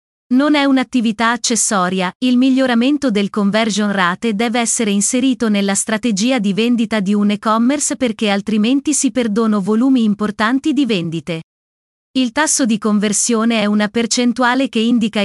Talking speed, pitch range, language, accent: 140 wpm, 210-255 Hz, Italian, native